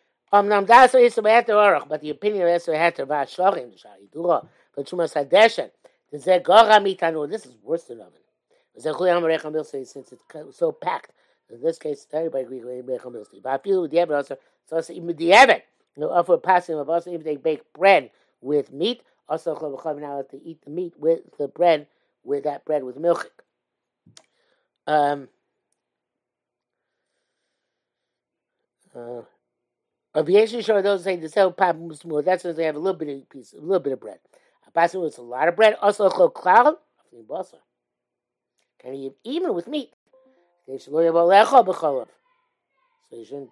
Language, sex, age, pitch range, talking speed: English, male, 50-69, 145-205 Hz, 110 wpm